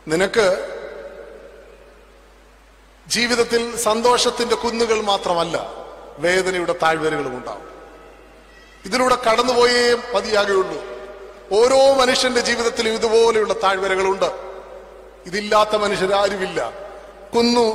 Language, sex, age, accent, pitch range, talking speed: Malayalam, male, 30-49, native, 195-240 Hz, 70 wpm